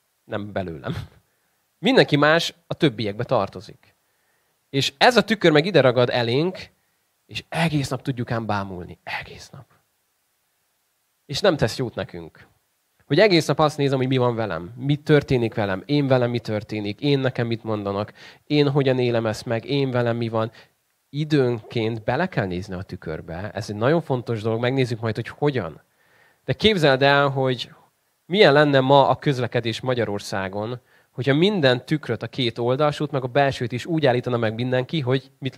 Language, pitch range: Hungarian, 110-145 Hz